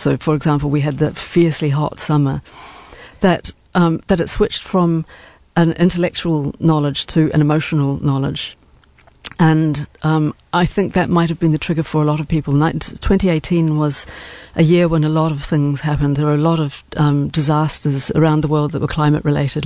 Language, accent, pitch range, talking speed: English, British, 145-165 Hz, 190 wpm